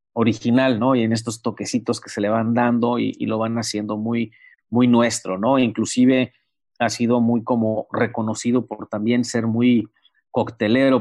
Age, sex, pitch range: 40-59, male, 110-125 Hz